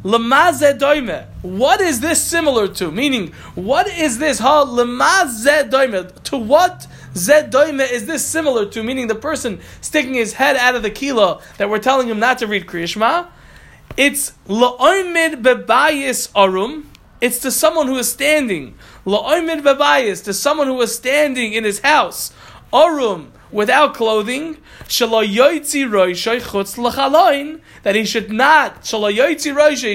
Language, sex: English, male